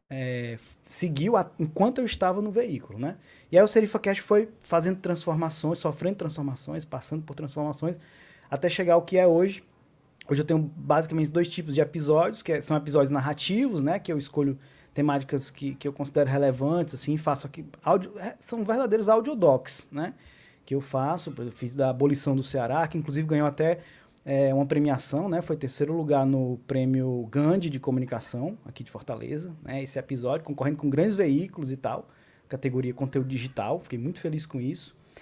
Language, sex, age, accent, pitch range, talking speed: Portuguese, male, 20-39, Brazilian, 135-170 Hz, 175 wpm